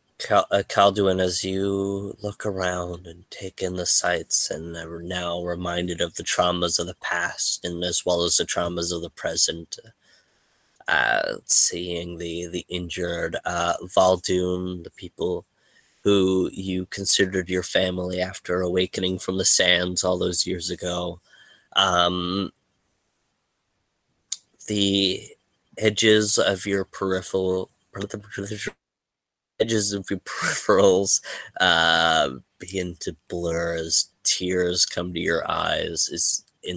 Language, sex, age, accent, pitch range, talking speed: English, male, 20-39, American, 85-95 Hz, 120 wpm